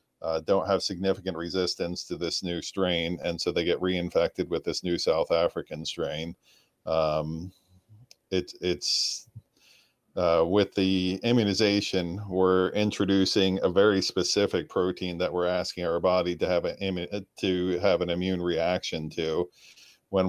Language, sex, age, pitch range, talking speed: English, male, 40-59, 85-95 Hz, 140 wpm